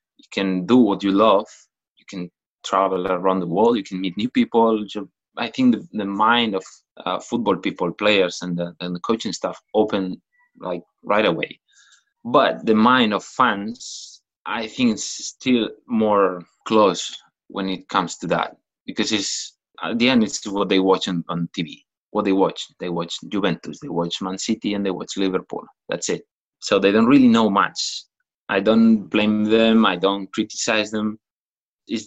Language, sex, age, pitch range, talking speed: English, male, 20-39, 90-110 Hz, 180 wpm